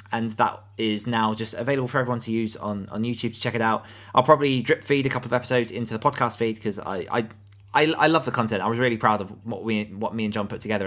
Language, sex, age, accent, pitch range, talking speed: English, male, 20-39, British, 105-125 Hz, 275 wpm